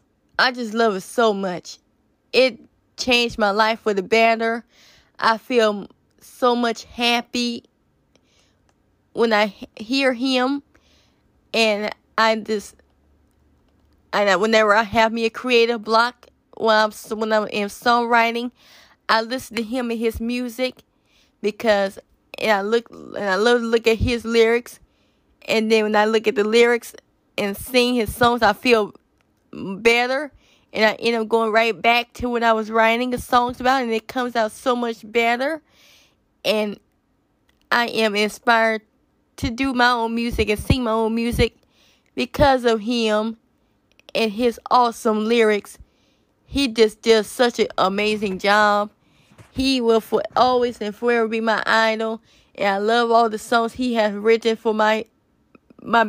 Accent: American